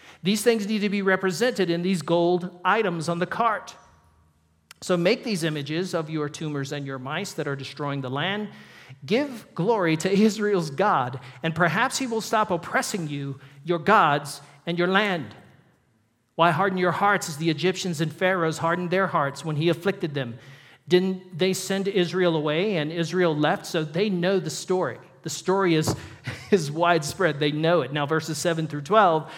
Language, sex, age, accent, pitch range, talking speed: English, male, 50-69, American, 155-205 Hz, 180 wpm